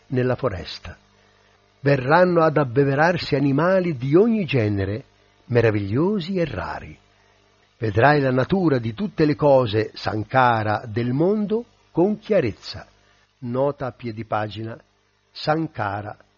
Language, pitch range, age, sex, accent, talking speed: Italian, 100-155 Hz, 60-79, male, native, 105 wpm